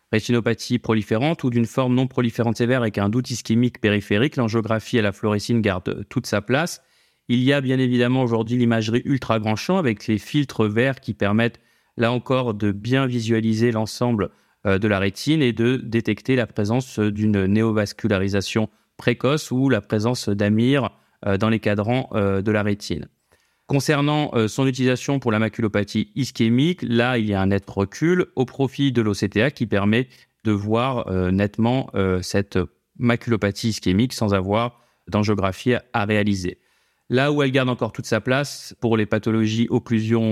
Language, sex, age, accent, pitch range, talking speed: French, male, 30-49, French, 105-125 Hz, 165 wpm